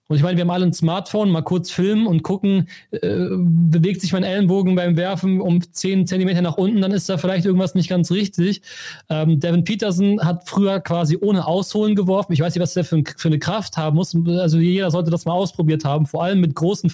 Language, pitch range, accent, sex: German, 160-190 Hz, German, male